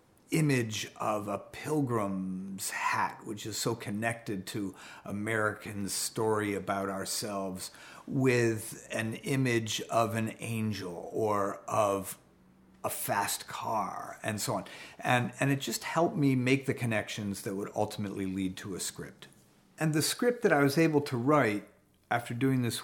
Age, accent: 40-59, American